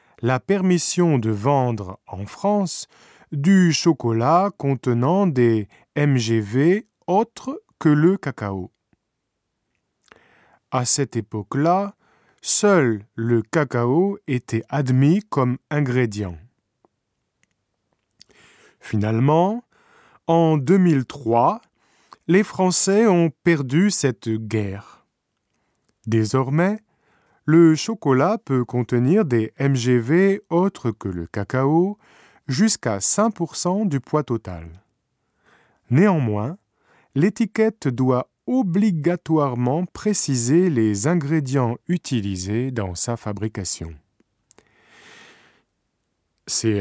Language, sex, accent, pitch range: Japanese, male, French, 115-175 Hz